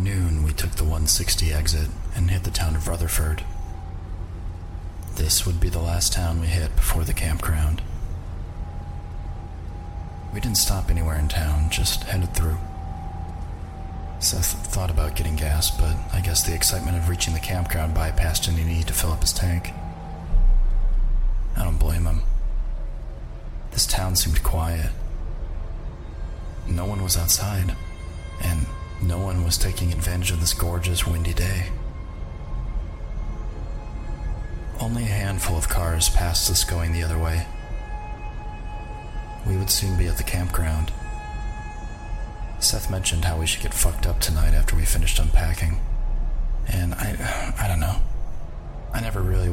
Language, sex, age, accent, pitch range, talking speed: English, male, 30-49, American, 80-90 Hz, 140 wpm